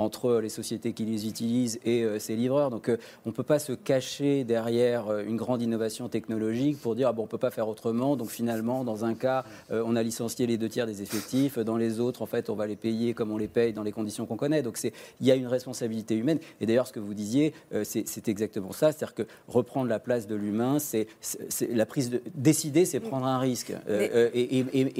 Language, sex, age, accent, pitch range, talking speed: French, male, 40-59, French, 110-135 Hz, 245 wpm